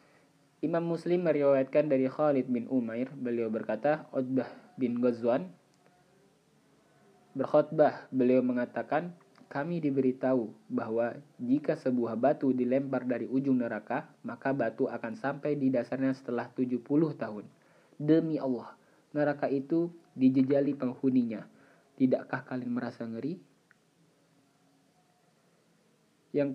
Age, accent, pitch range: 20-39, native, 120-145 Hz